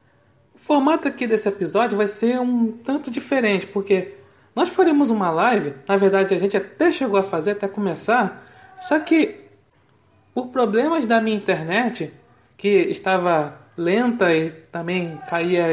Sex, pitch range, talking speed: male, 175-235 Hz, 145 wpm